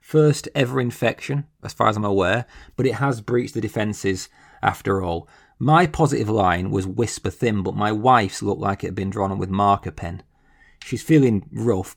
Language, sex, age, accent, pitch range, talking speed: English, male, 30-49, British, 95-120 Hz, 185 wpm